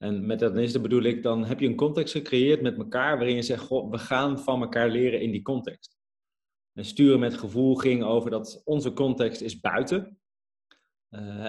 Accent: Dutch